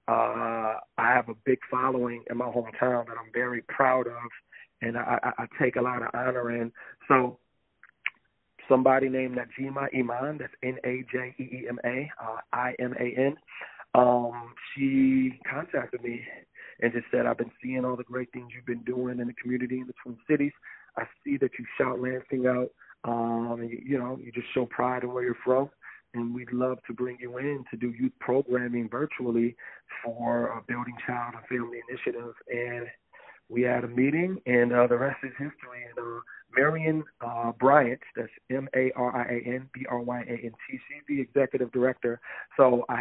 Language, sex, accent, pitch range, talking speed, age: English, male, American, 120-130 Hz, 165 wpm, 40-59